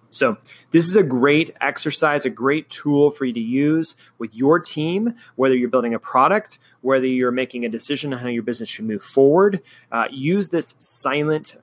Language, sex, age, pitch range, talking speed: English, male, 30-49, 125-170 Hz, 190 wpm